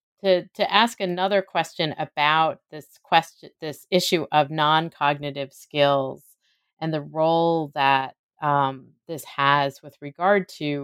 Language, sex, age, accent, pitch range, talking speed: English, female, 30-49, American, 140-160 Hz, 135 wpm